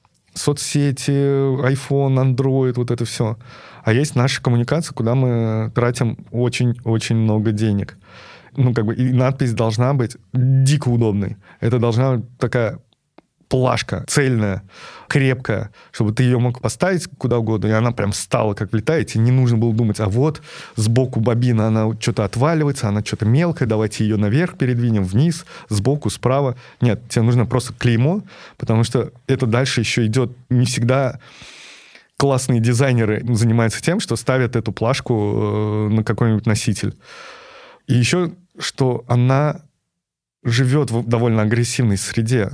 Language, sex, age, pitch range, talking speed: Russian, male, 20-39, 110-130 Hz, 140 wpm